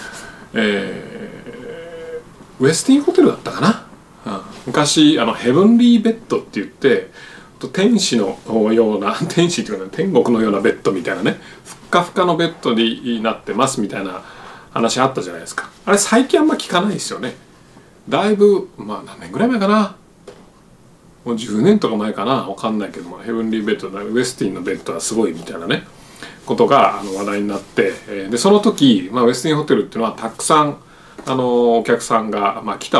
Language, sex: Japanese, male